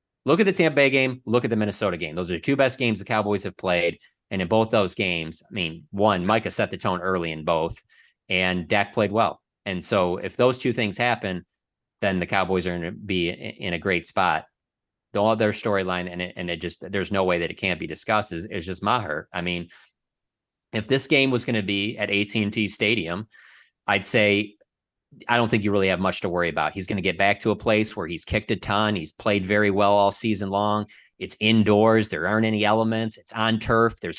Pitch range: 95-115 Hz